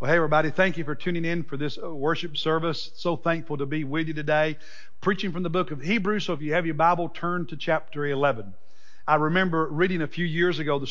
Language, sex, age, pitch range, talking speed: English, male, 50-69, 145-175 Hz, 235 wpm